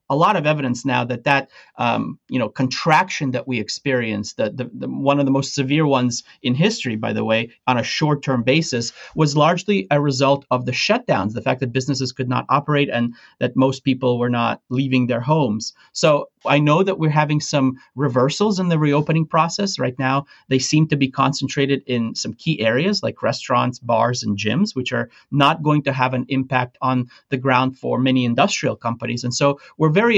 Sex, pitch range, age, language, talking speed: male, 125-145 Hz, 30-49, English, 205 wpm